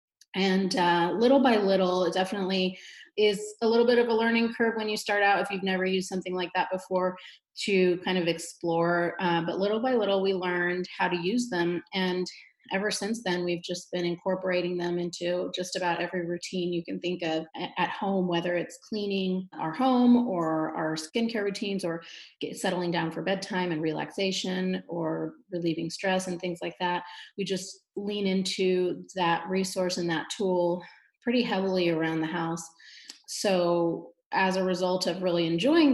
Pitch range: 170-195 Hz